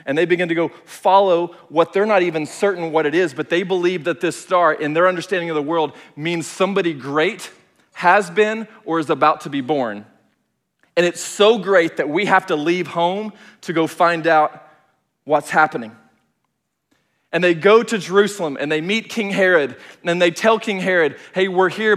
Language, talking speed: English, 195 wpm